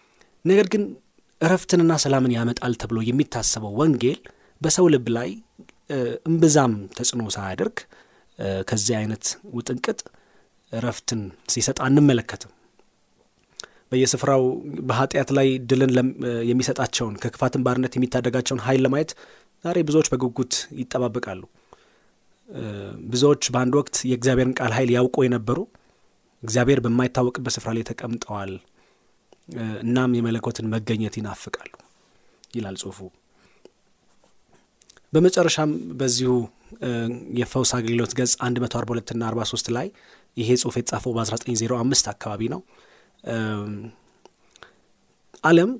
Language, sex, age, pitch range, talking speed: Amharic, male, 30-49, 115-140 Hz, 85 wpm